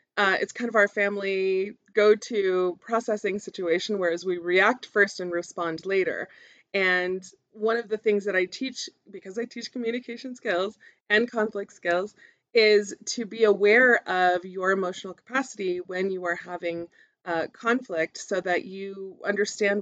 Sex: female